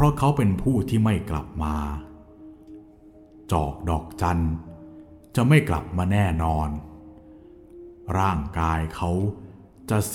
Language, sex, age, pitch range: Thai, male, 60-79, 85-115 Hz